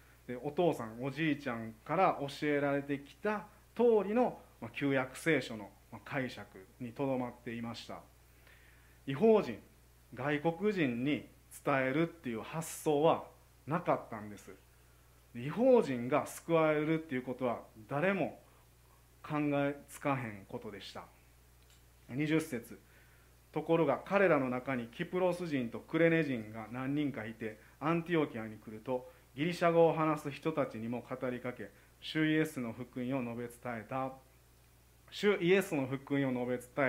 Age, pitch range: 40-59, 110-155 Hz